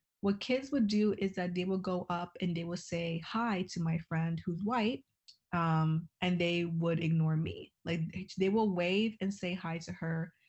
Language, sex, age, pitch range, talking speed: English, female, 20-39, 165-190 Hz, 200 wpm